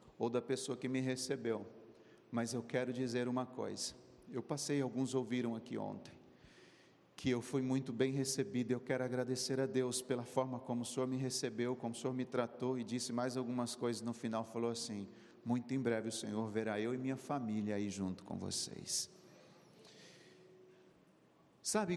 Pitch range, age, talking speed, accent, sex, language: 120-145 Hz, 50-69, 180 wpm, Brazilian, male, Portuguese